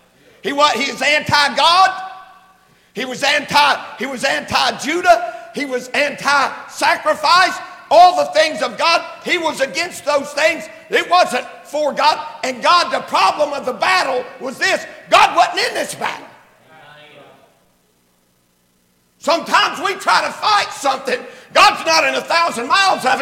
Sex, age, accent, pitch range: male, 50-69, American, 245-350 Hz